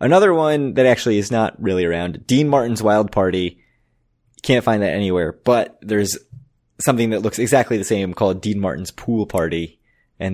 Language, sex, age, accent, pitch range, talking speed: English, male, 20-39, American, 100-120 Hz, 175 wpm